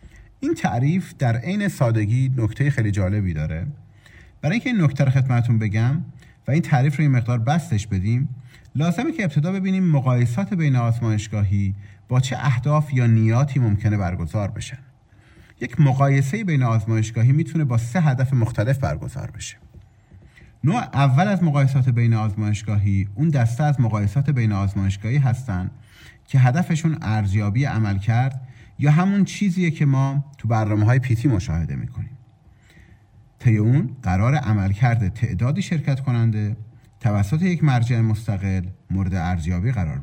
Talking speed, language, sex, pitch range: 135 wpm, Persian, male, 110-140 Hz